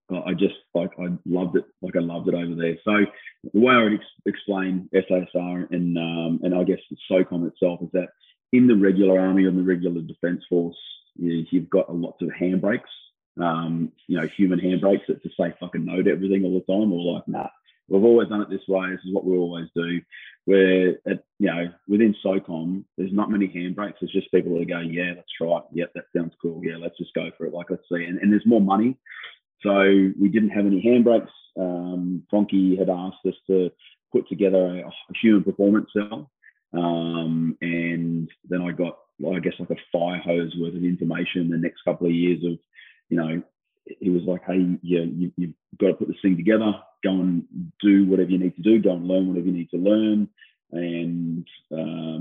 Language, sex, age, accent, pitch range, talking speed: English, male, 20-39, Australian, 85-95 Hz, 210 wpm